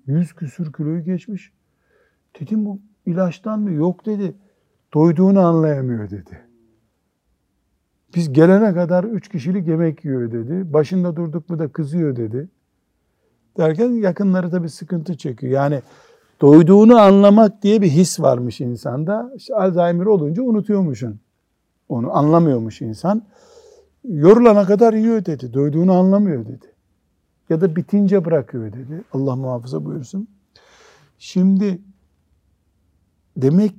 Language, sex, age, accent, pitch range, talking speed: Turkish, male, 60-79, native, 130-200 Hz, 115 wpm